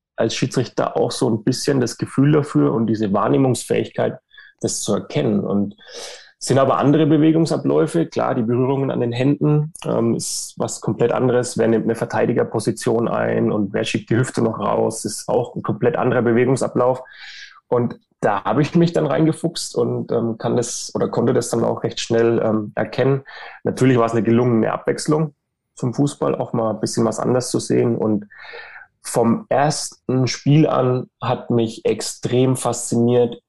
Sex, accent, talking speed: male, German, 170 wpm